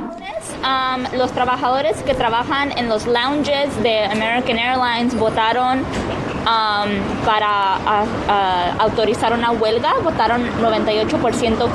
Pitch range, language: 225-280 Hz, Spanish